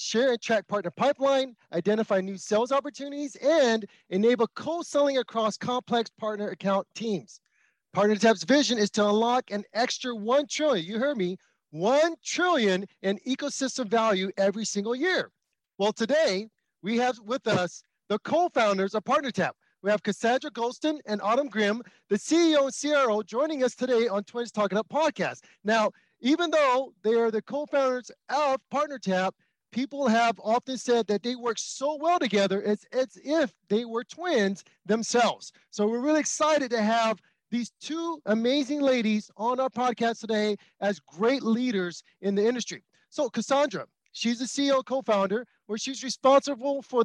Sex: male